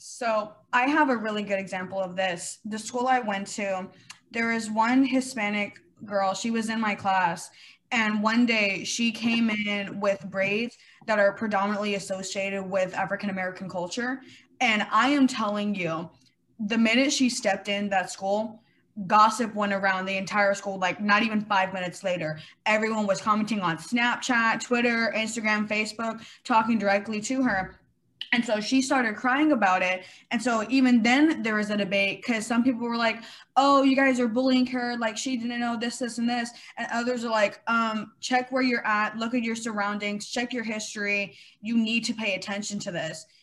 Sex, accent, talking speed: female, American, 180 wpm